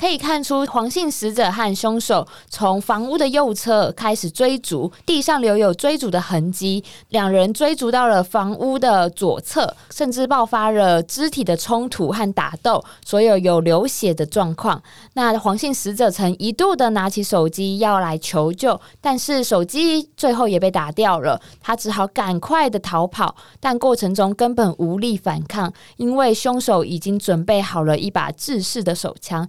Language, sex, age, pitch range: Chinese, female, 20-39, 185-255 Hz